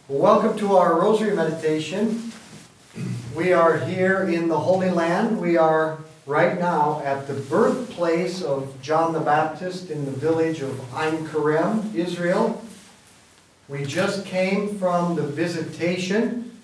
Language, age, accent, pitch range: English, 50-69, American, 150-180 Hz